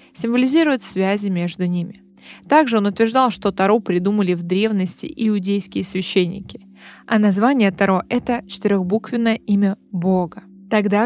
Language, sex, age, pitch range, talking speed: Russian, female, 20-39, 190-230 Hz, 120 wpm